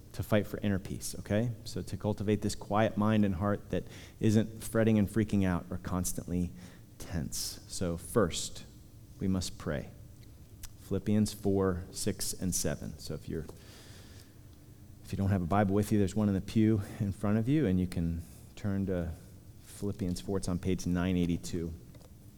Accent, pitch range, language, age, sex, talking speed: American, 95-115 Hz, English, 30-49, male, 170 wpm